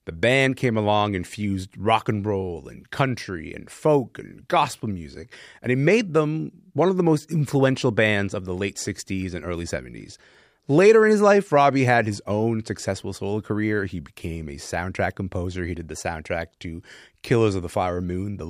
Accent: American